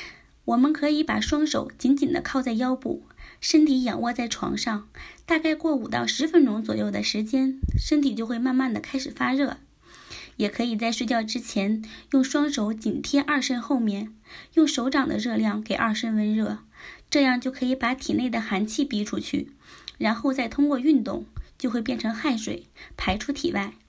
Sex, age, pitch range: female, 20-39, 225-285 Hz